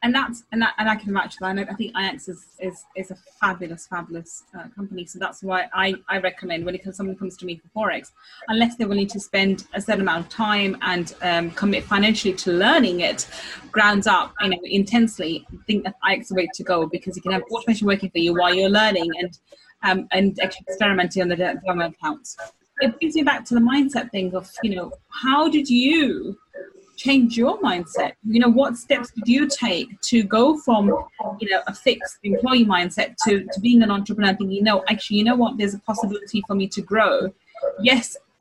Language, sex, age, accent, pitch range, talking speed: English, female, 30-49, British, 190-250 Hz, 215 wpm